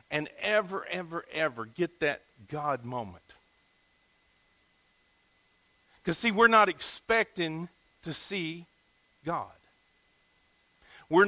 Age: 50-69